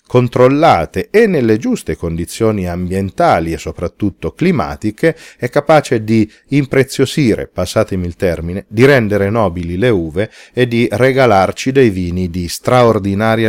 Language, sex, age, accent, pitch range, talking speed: Italian, male, 40-59, native, 90-120 Hz, 125 wpm